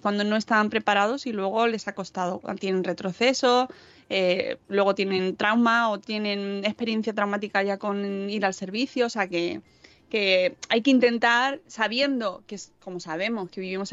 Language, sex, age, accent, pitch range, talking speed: Spanish, female, 20-39, Spanish, 195-240 Hz, 165 wpm